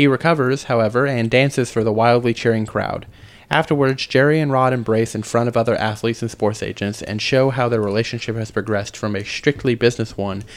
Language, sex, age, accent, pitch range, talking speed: English, male, 30-49, American, 110-130 Hz, 200 wpm